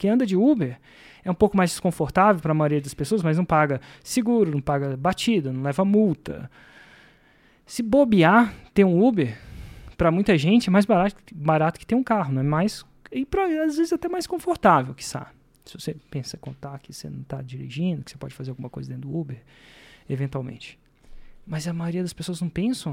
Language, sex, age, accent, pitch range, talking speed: Portuguese, male, 20-39, Brazilian, 140-195 Hz, 205 wpm